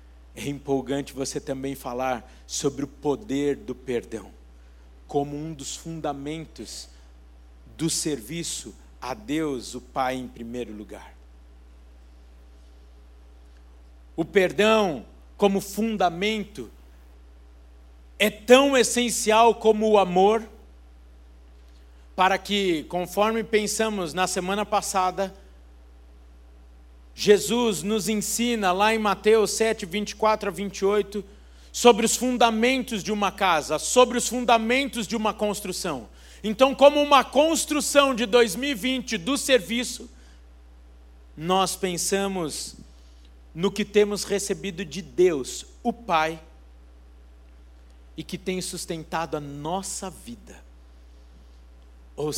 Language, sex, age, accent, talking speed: Portuguese, male, 50-69, Brazilian, 100 wpm